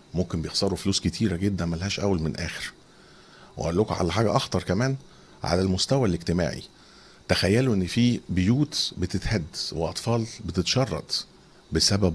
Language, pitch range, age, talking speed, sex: Arabic, 85-115 Hz, 50-69, 130 wpm, male